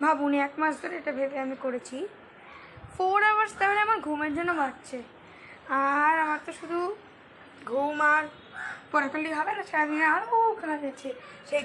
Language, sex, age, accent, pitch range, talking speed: Bengali, female, 20-39, native, 270-365 Hz, 155 wpm